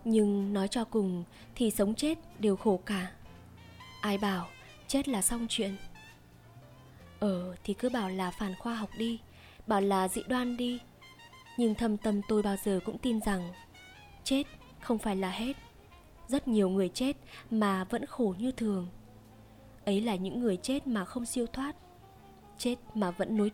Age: 20-39